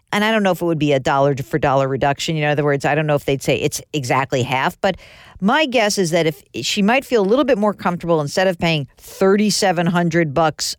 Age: 50-69